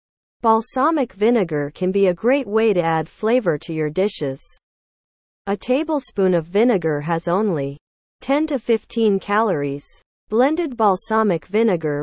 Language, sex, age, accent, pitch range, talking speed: English, female, 40-59, American, 165-230 Hz, 130 wpm